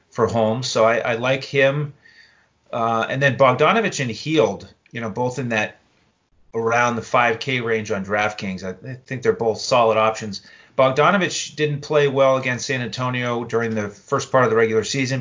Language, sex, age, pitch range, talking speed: English, male, 30-49, 105-135 Hz, 180 wpm